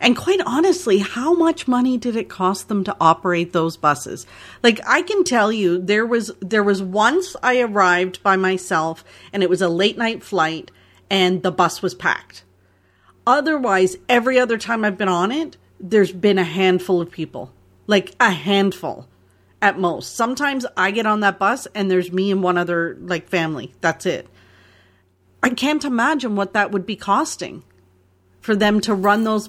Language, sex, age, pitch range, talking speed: English, female, 40-59, 165-215 Hz, 180 wpm